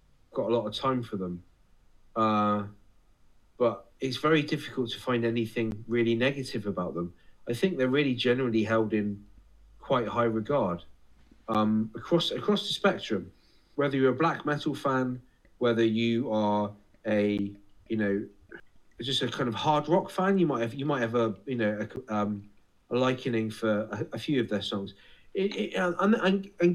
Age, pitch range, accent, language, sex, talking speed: 30-49, 105-145 Hz, British, English, male, 165 wpm